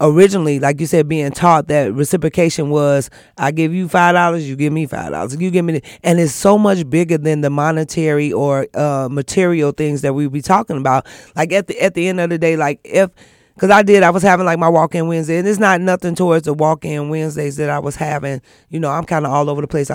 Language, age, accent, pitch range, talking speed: English, 30-49, American, 150-180 Hz, 250 wpm